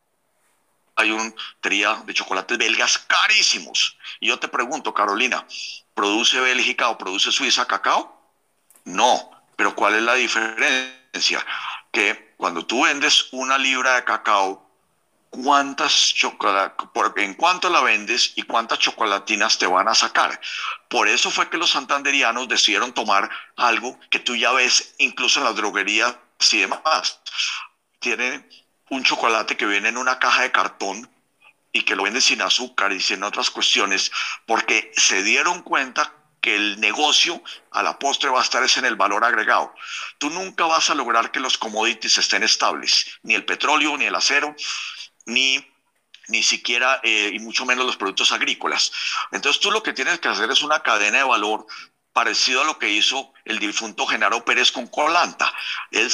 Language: Spanish